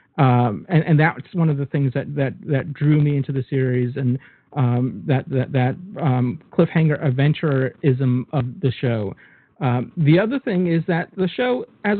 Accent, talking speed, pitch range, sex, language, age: American, 180 wpm, 130-160 Hz, male, English, 40-59